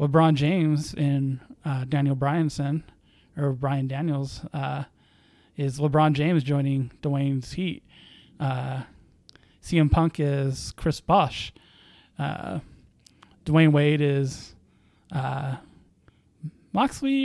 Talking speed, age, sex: 95 wpm, 20-39, male